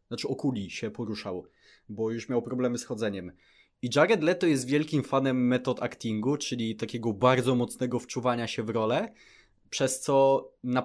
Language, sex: Polish, male